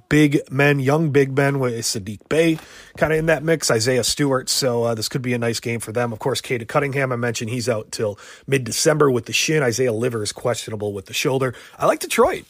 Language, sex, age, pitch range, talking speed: English, male, 30-49, 120-160 Hz, 230 wpm